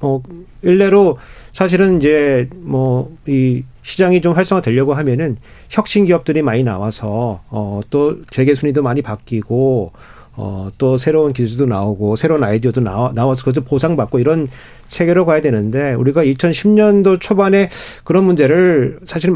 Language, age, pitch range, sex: Korean, 40-59, 125-175 Hz, male